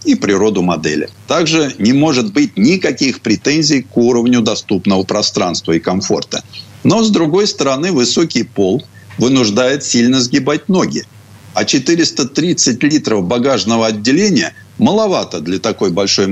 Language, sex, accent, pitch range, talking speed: Russian, male, native, 100-155 Hz, 125 wpm